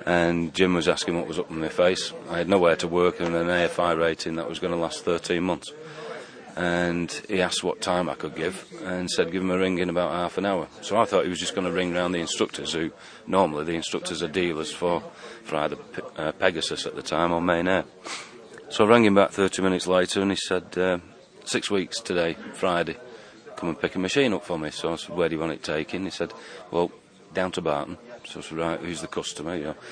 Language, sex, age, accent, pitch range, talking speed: English, male, 40-59, British, 85-90 Hz, 235 wpm